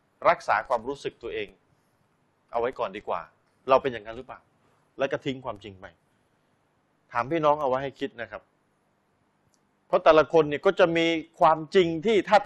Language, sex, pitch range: Thai, male, 145-195 Hz